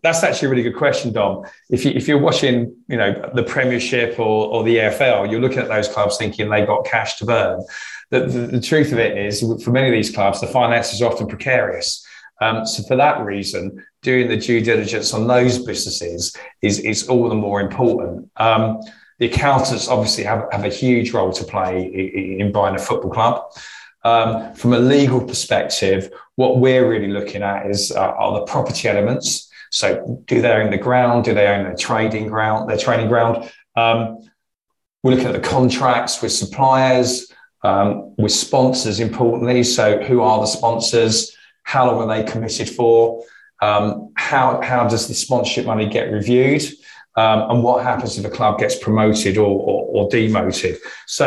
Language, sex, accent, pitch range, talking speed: English, male, British, 105-125 Hz, 185 wpm